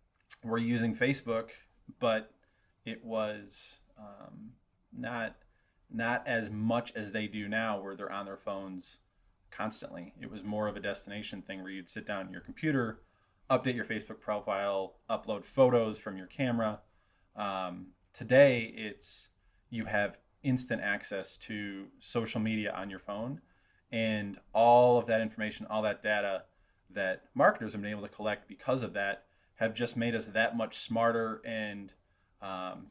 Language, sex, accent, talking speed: English, male, American, 155 wpm